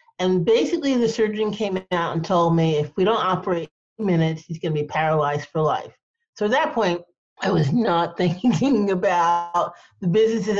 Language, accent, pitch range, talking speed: English, American, 165-215 Hz, 175 wpm